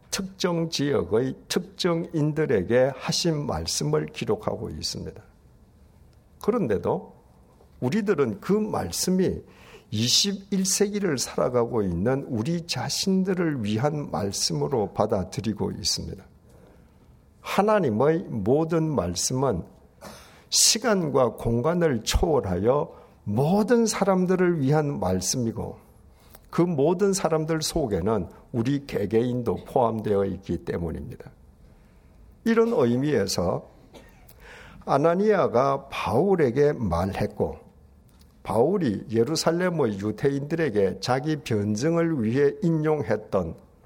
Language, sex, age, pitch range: Korean, male, 60-79, 105-170 Hz